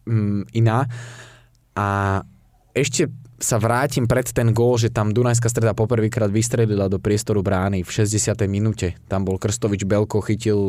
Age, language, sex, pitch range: 20-39, Slovak, male, 105-120 Hz